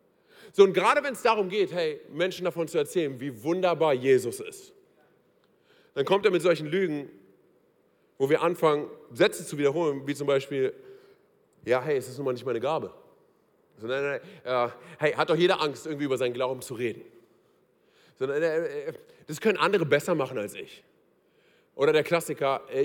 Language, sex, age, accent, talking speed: German, male, 40-59, German, 175 wpm